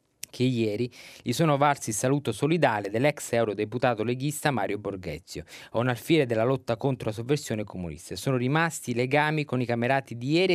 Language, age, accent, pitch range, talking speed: Italian, 20-39, native, 105-135 Hz, 175 wpm